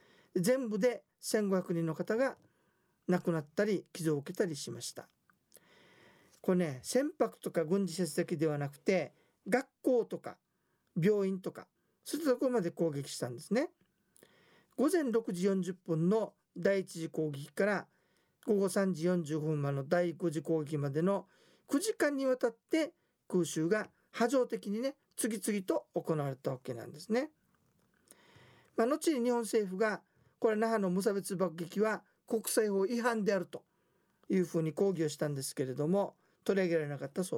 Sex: male